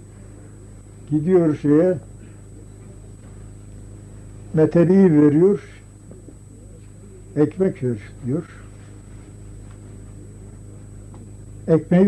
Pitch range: 105-160 Hz